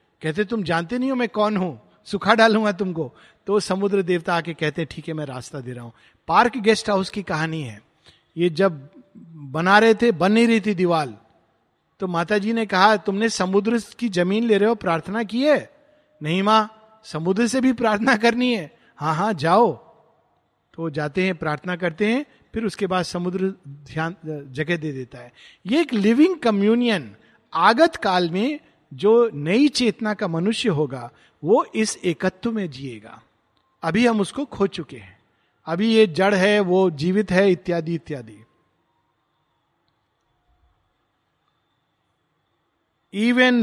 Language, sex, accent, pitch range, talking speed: Hindi, male, native, 165-225 Hz, 155 wpm